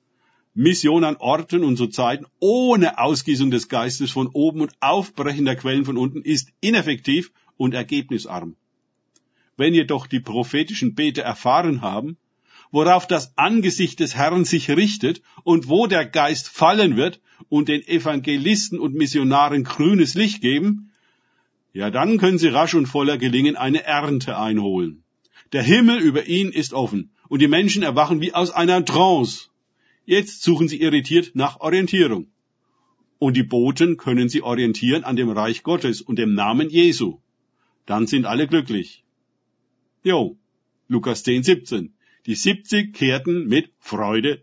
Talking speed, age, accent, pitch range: 145 wpm, 50-69, German, 125-175 Hz